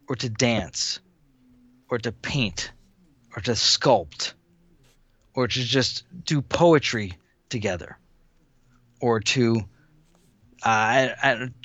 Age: 40-59